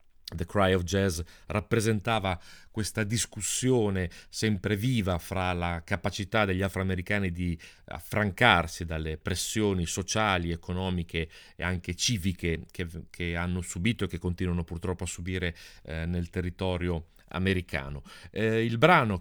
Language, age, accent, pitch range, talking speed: Italian, 40-59, native, 90-110 Hz, 125 wpm